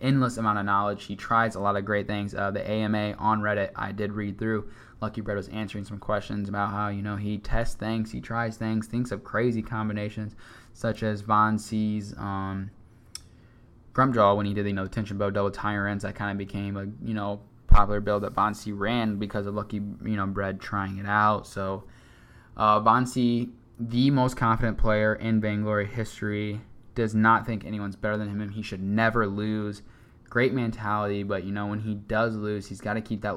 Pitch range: 105-115 Hz